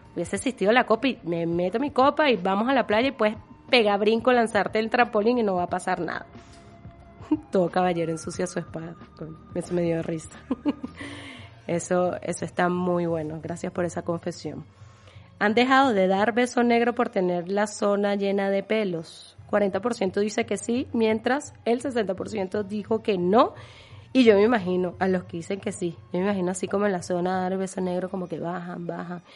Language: Spanish